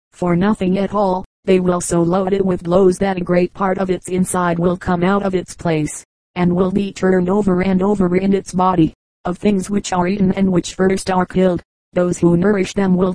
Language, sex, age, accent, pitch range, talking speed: English, female, 40-59, American, 175-195 Hz, 225 wpm